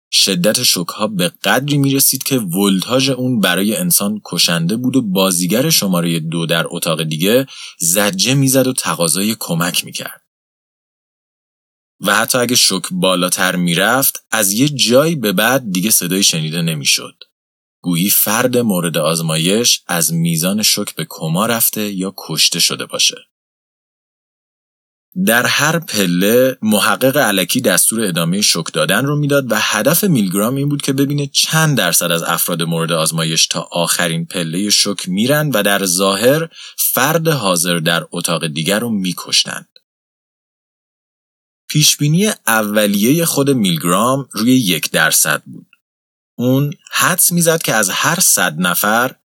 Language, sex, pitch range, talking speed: Persian, male, 90-140 Hz, 135 wpm